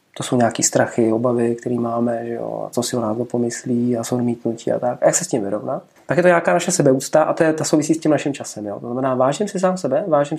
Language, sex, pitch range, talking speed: Czech, male, 125-170 Hz, 285 wpm